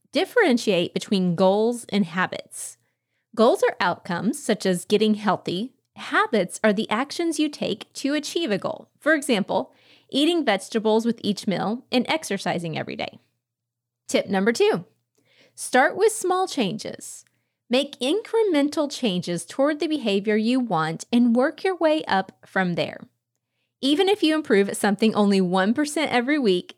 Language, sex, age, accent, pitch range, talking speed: English, female, 30-49, American, 190-270 Hz, 145 wpm